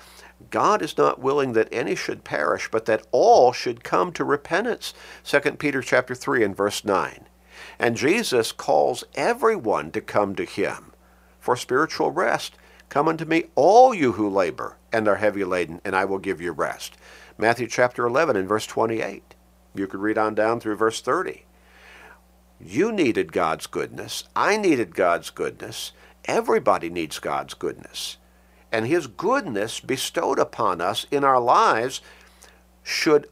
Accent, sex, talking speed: American, male, 155 wpm